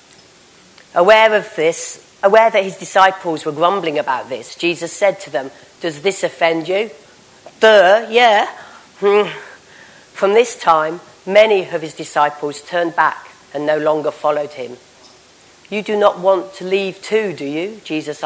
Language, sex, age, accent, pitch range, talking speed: English, female, 40-59, British, 155-220 Hz, 150 wpm